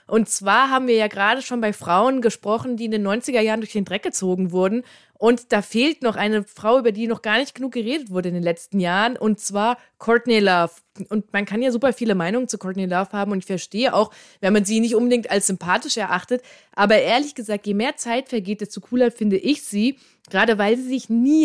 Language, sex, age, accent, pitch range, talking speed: German, female, 20-39, German, 200-235 Hz, 230 wpm